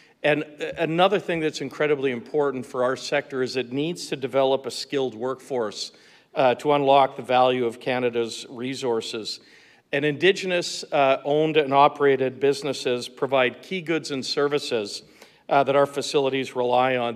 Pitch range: 130-150 Hz